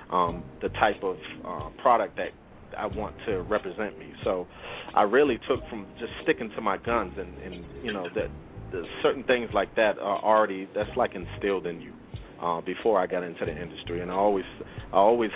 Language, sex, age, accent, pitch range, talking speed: English, male, 30-49, American, 90-110 Hz, 195 wpm